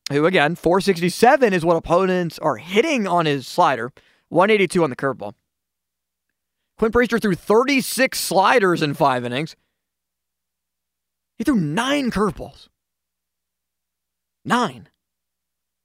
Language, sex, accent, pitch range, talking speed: English, male, American, 135-200 Hz, 105 wpm